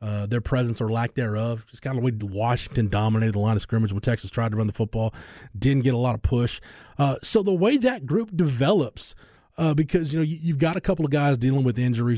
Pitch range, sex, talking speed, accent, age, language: 115-150 Hz, male, 245 wpm, American, 20-39, English